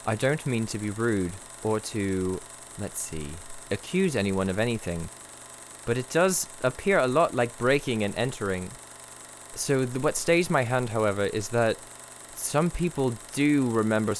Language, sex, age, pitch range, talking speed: English, male, 20-39, 95-125 Hz, 150 wpm